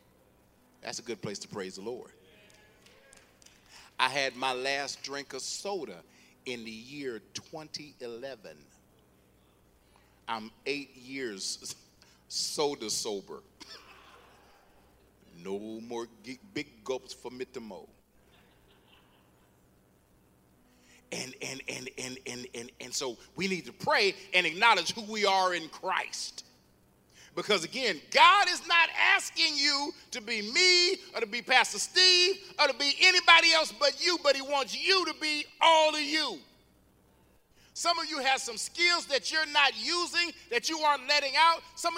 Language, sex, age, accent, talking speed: English, male, 40-59, American, 140 wpm